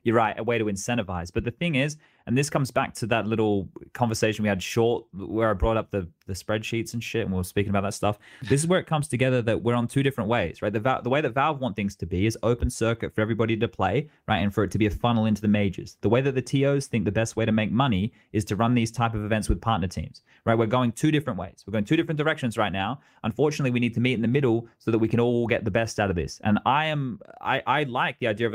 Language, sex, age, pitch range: English, male, 20-39, 105-125 Hz